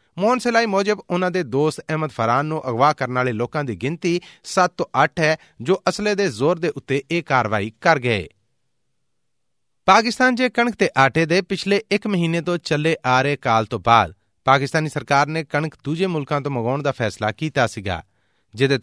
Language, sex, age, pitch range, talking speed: Punjabi, male, 30-49, 125-175 Hz, 180 wpm